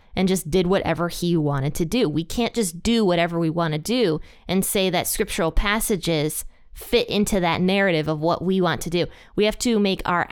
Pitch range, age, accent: 175-220 Hz, 20-39, American